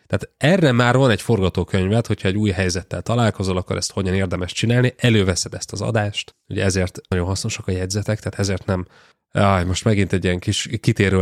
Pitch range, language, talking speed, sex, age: 95-110 Hz, Hungarian, 185 wpm, male, 30-49